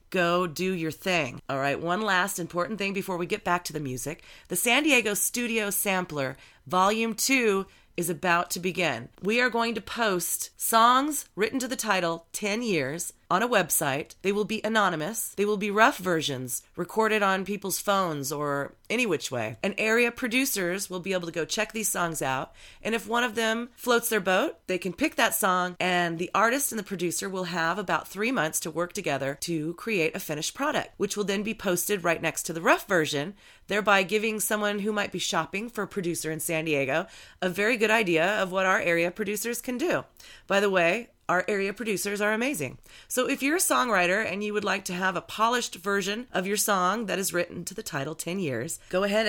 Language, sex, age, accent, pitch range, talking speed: English, female, 30-49, American, 170-220 Hz, 210 wpm